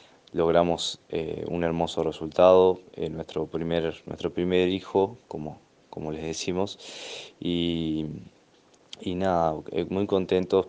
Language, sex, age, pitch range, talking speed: Spanish, male, 20-39, 80-90 Hz, 110 wpm